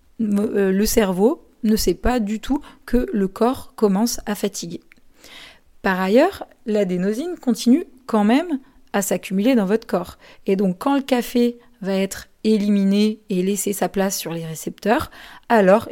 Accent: French